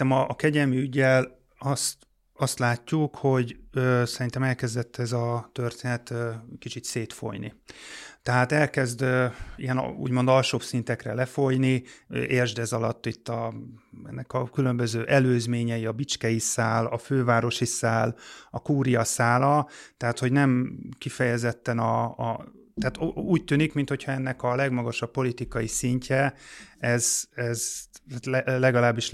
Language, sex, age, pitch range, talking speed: Hungarian, male, 30-49, 115-130 Hz, 130 wpm